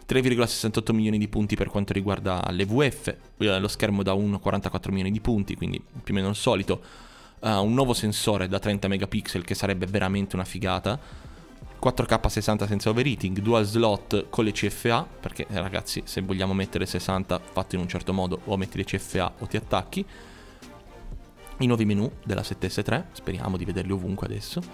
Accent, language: native, Italian